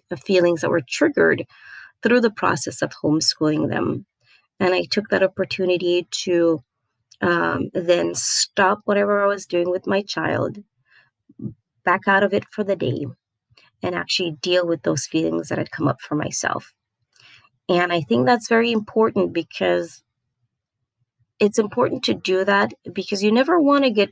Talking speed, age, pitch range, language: 155 wpm, 30-49, 155-195 Hz, English